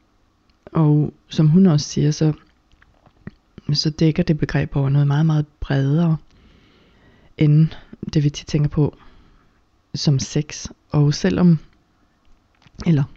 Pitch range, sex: 145-165 Hz, female